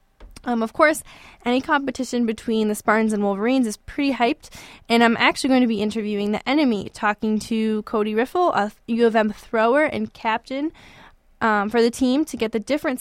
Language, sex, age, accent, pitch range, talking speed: English, female, 10-29, American, 210-245 Hz, 190 wpm